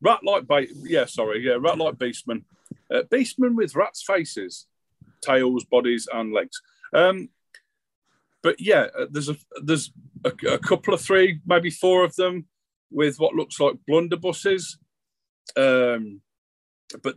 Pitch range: 130-180 Hz